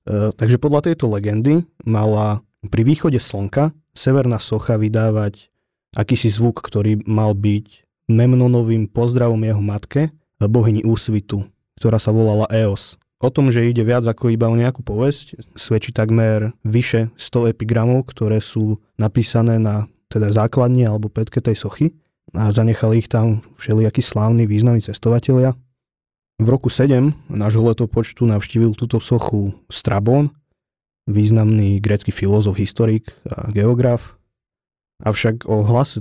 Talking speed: 130 wpm